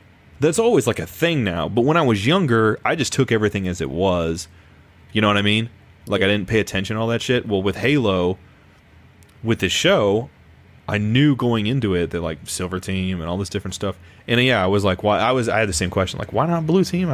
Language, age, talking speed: English, 30-49, 245 wpm